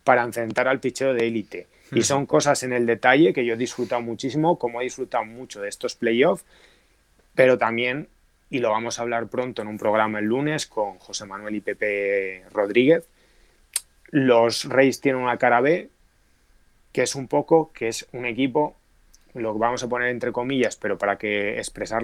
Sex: male